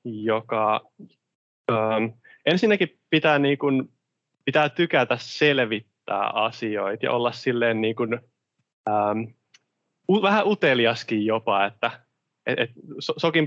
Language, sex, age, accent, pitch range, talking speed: Finnish, male, 20-39, native, 115-150 Hz, 100 wpm